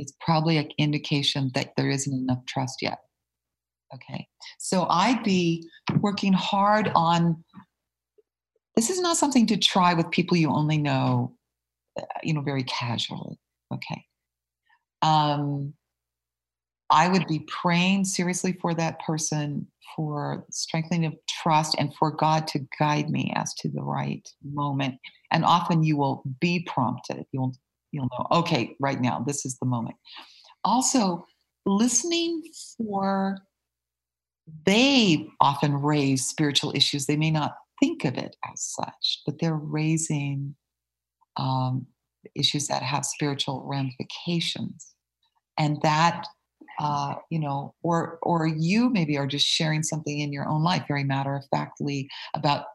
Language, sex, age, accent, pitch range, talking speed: English, female, 50-69, American, 135-170 Hz, 135 wpm